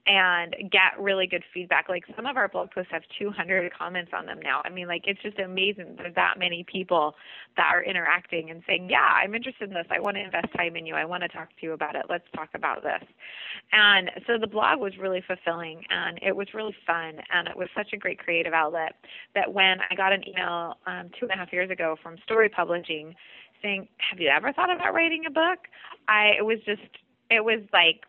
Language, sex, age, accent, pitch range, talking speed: English, female, 20-39, American, 175-215 Hz, 235 wpm